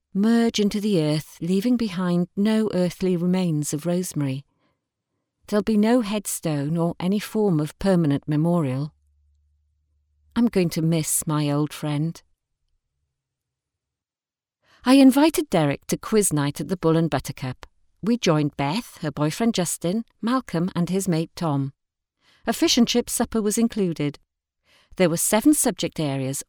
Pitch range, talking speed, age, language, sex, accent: 150-225 Hz, 140 wpm, 40-59, English, female, British